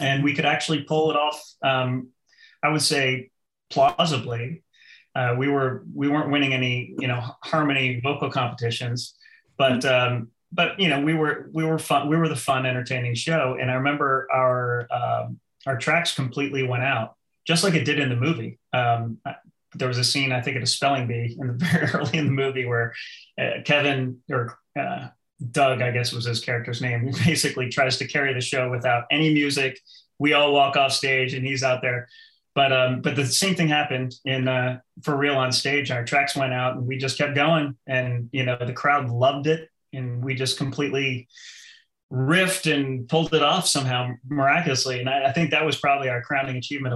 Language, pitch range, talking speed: English, 125-150 Hz, 200 wpm